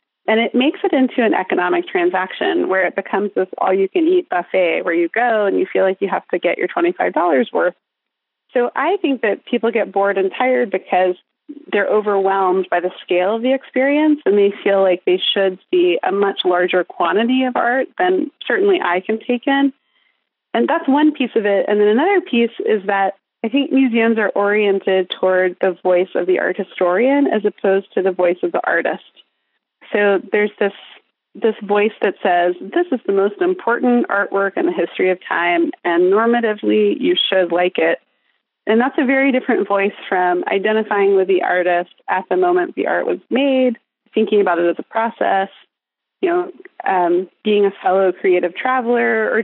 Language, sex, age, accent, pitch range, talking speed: English, female, 30-49, American, 190-270 Hz, 185 wpm